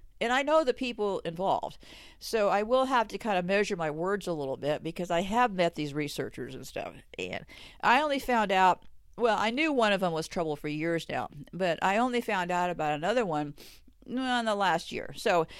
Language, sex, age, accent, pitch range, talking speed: English, female, 50-69, American, 185-255 Hz, 215 wpm